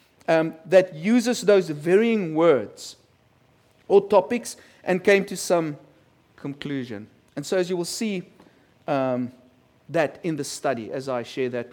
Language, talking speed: English, 145 wpm